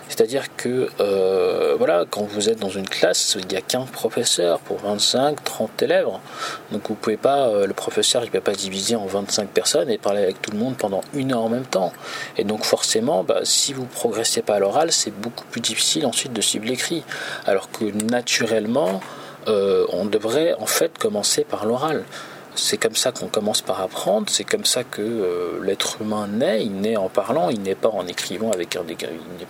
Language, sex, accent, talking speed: French, male, French, 205 wpm